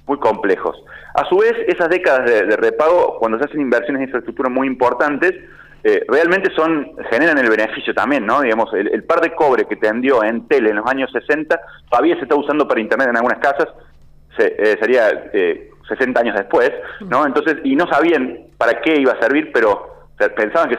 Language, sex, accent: Spanish, male, Argentinian